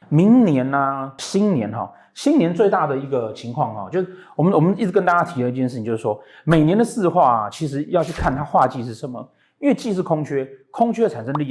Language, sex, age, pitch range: Chinese, male, 30-49, 125-185 Hz